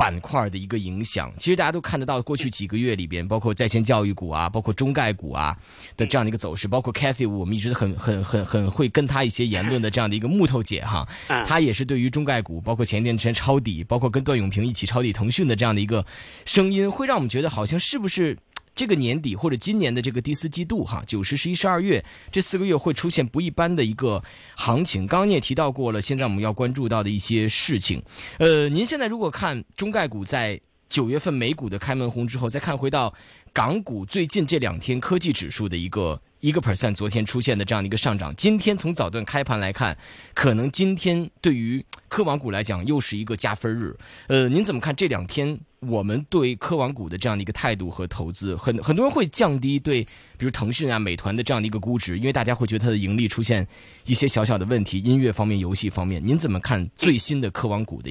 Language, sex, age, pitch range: Chinese, male, 20-39, 105-145 Hz